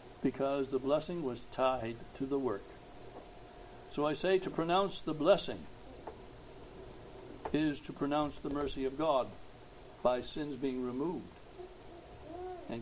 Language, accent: English, American